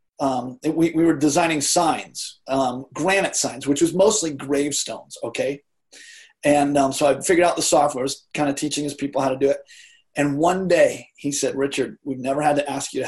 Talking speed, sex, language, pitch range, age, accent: 210 wpm, male, English, 145-175 Hz, 30-49, American